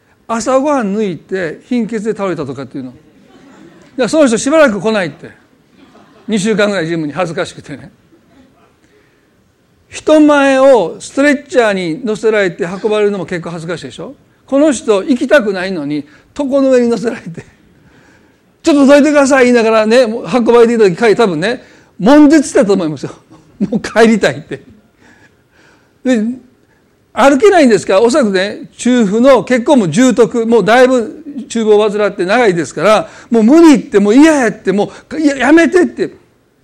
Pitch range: 180-255 Hz